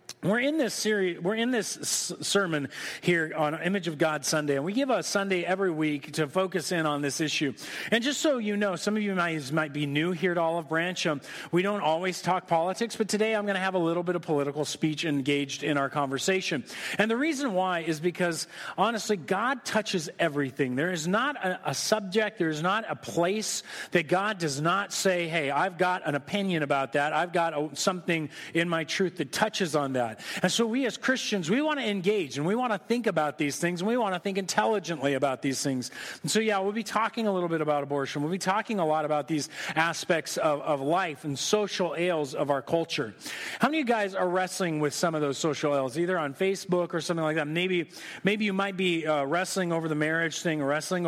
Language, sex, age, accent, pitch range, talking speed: English, male, 40-59, American, 150-195 Hz, 230 wpm